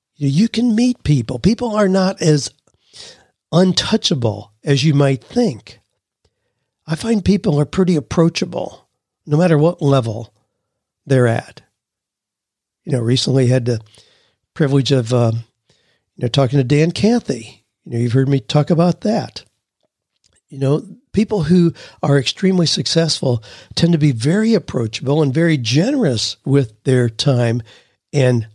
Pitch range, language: 125-175 Hz, English